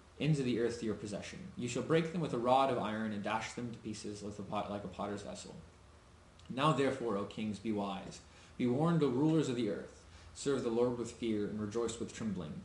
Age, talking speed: 20-39, 235 wpm